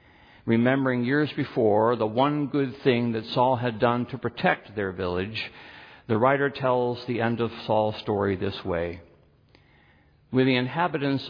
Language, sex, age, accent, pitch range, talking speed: English, male, 60-79, American, 95-115 Hz, 150 wpm